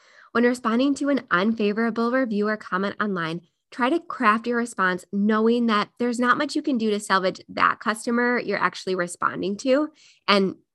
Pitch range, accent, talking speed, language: 190-240 Hz, American, 175 wpm, English